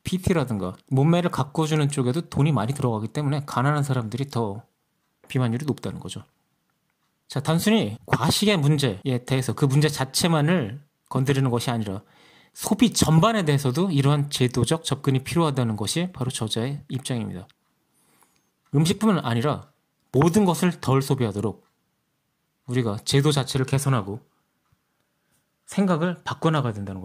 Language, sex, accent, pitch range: Korean, male, native, 125-165 Hz